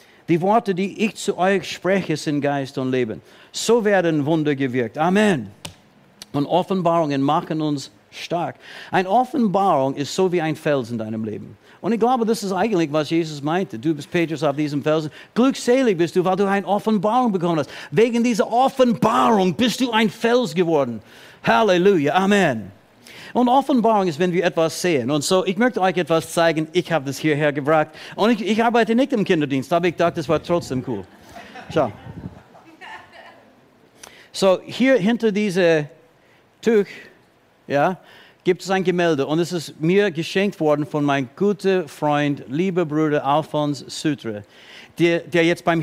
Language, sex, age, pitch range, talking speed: German, male, 60-79, 150-200 Hz, 165 wpm